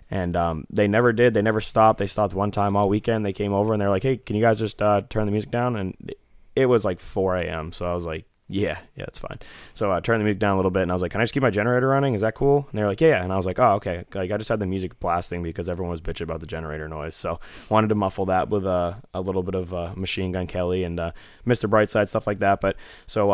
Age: 20-39